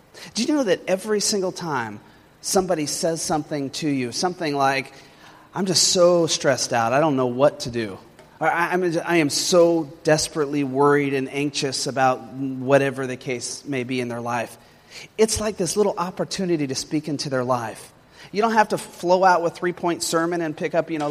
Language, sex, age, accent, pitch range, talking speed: English, male, 30-49, American, 130-165 Hz, 195 wpm